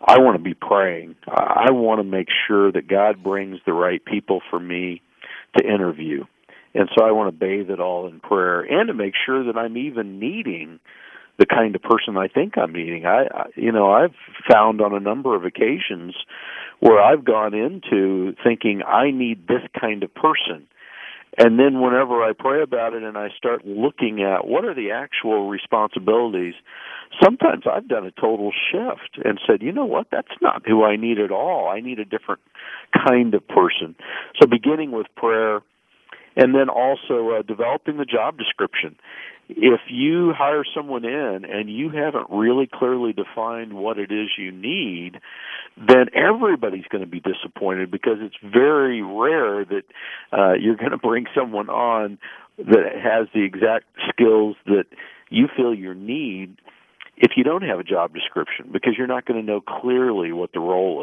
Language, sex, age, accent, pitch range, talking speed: English, male, 50-69, American, 95-120 Hz, 180 wpm